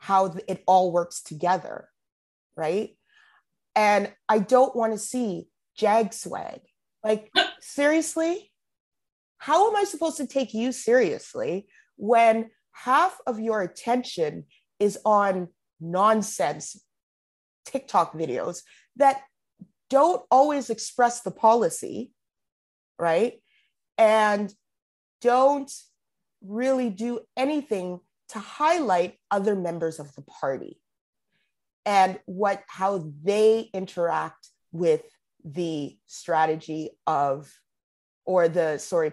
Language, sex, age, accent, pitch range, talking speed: English, female, 30-49, American, 195-285 Hz, 100 wpm